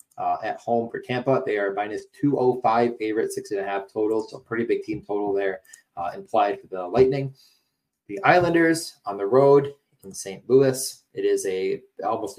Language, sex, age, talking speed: English, male, 20-39, 185 wpm